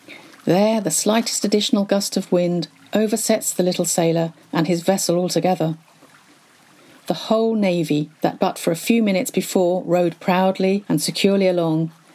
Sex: female